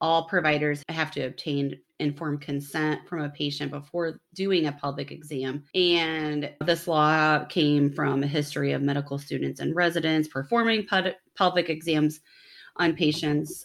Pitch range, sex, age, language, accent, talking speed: 145-170 Hz, female, 30-49, English, American, 140 wpm